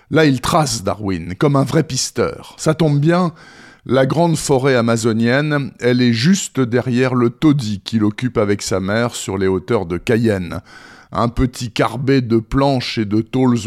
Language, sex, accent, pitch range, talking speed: French, male, French, 115-150 Hz, 170 wpm